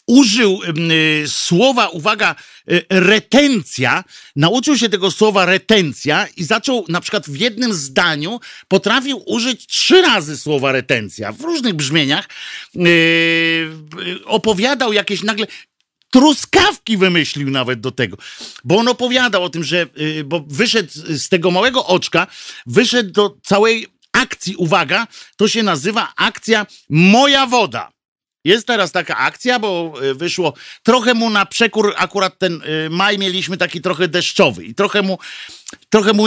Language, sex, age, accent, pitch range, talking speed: Polish, male, 50-69, native, 170-230 Hz, 125 wpm